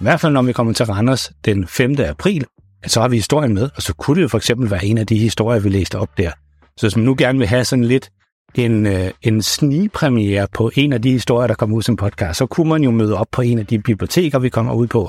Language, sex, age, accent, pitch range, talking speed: Danish, male, 60-79, native, 100-130 Hz, 275 wpm